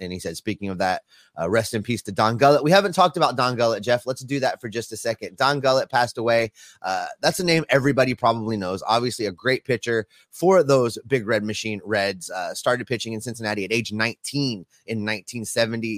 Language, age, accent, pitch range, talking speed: English, 30-49, American, 105-125 Hz, 220 wpm